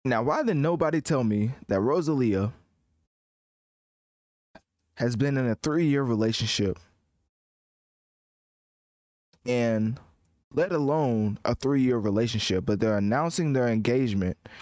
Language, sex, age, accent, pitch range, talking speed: English, male, 20-39, American, 95-120 Hz, 105 wpm